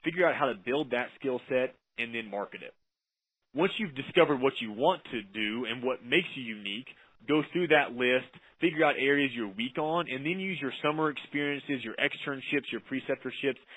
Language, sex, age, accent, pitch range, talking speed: English, male, 30-49, American, 115-145 Hz, 195 wpm